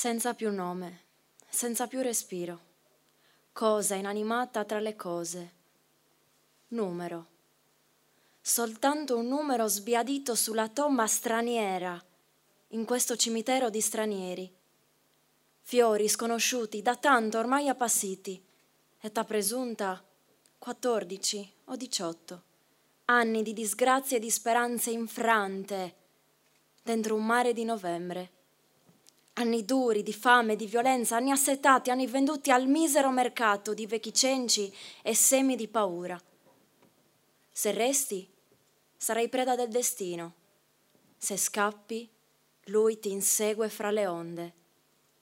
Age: 20-39